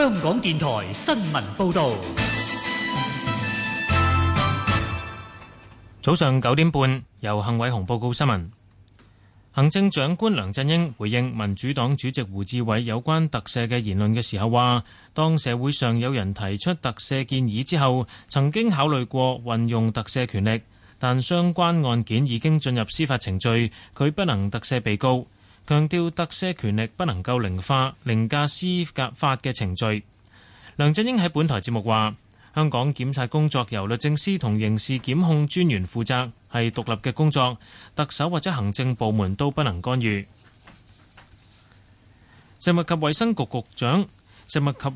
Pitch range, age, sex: 110-145 Hz, 30-49, male